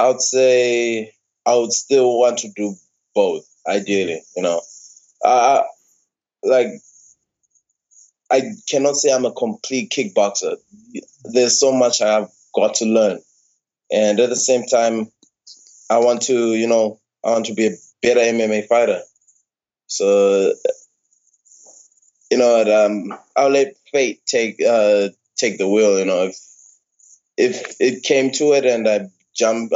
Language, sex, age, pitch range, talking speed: English, male, 20-39, 105-130 Hz, 140 wpm